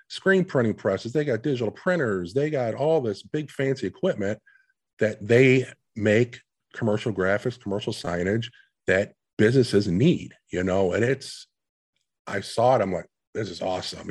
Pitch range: 90-125 Hz